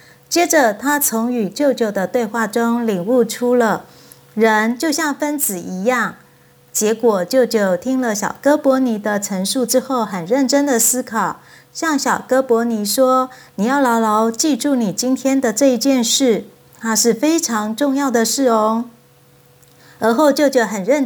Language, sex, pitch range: Chinese, female, 225-280 Hz